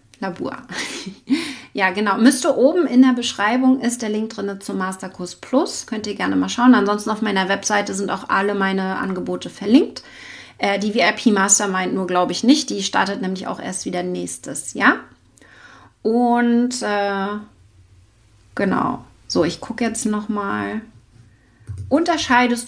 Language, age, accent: German, 30-49, German